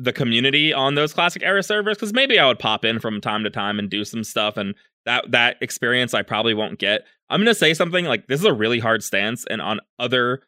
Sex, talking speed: male, 250 wpm